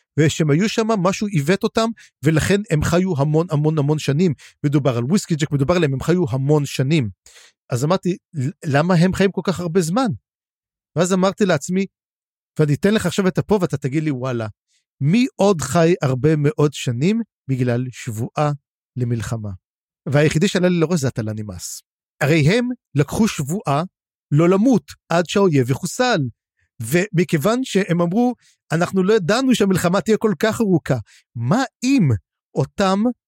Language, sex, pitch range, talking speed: Hebrew, male, 145-205 Hz, 155 wpm